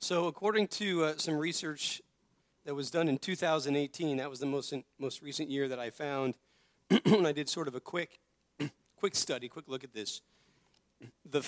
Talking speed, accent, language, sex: 190 wpm, American, English, male